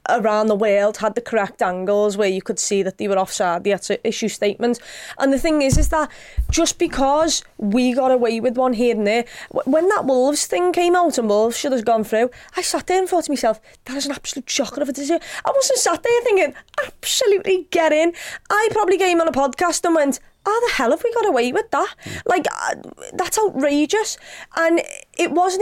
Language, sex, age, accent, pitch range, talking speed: English, female, 20-39, British, 255-335 Hz, 225 wpm